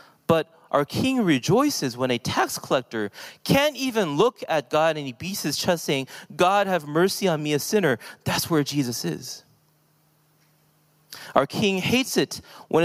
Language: English